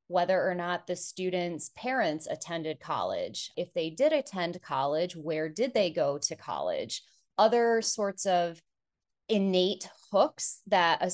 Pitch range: 155-185 Hz